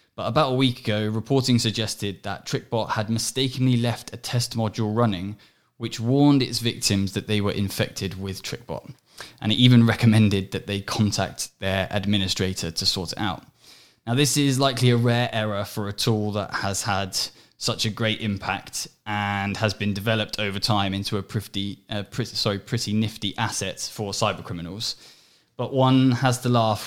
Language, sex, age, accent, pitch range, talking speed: English, male, 10-29, British, 100-120 Hz, 170 wpm